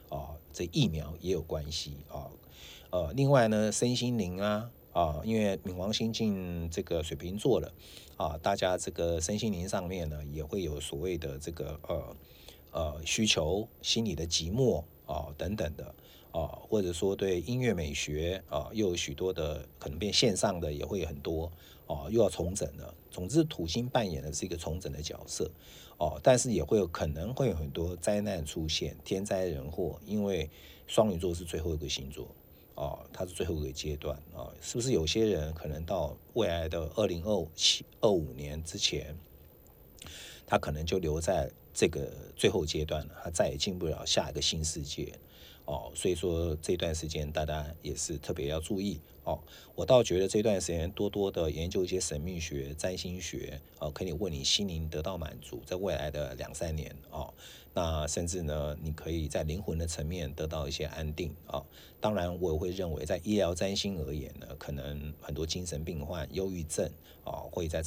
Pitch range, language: 75-90 Hz, English